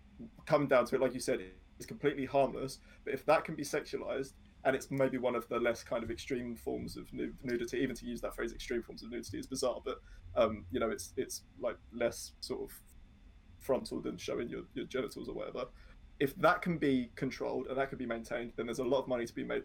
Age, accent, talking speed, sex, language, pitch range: 20-39, British, 235 wpm, male, English, 115-135 Hz